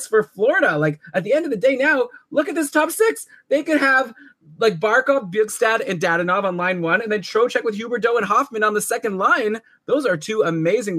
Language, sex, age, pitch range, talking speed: English, male, 20-39, 150-210 Hz, 230 wpm